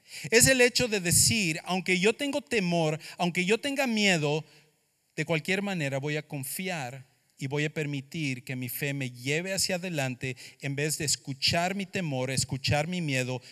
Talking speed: 175 wpm